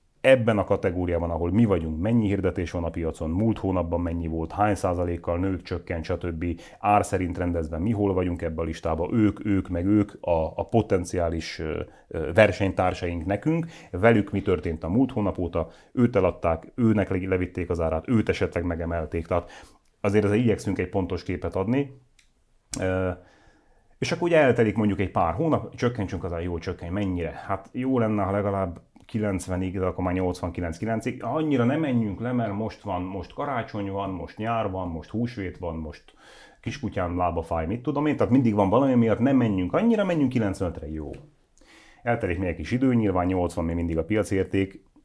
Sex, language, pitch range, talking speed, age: male, Hungarian, 85-110 Hz, 170 wpm, 30-49